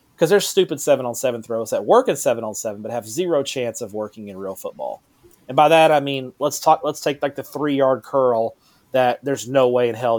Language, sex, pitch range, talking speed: English, male, 115-150 Hz, 245 wpm